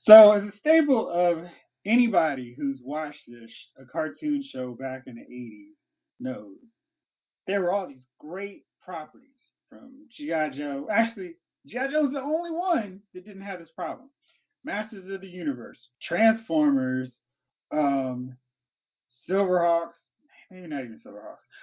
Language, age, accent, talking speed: English, 30-49, American, 135 wpm